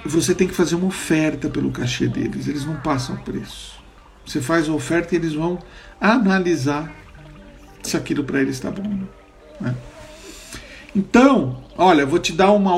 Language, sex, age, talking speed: Portuguese, male, 50-69, 165 wpm